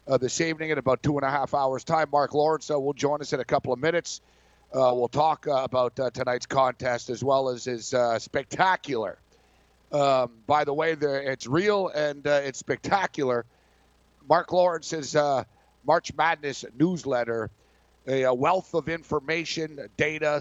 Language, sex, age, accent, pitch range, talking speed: English, male, 50-69, American, 125-155 Hz, 175 wpm